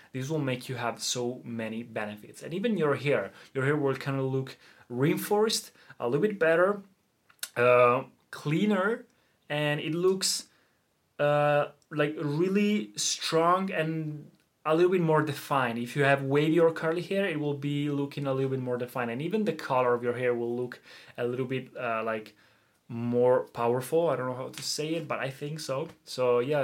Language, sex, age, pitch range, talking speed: Italian, male, 20-39, 125-160 Hz, 185 wpm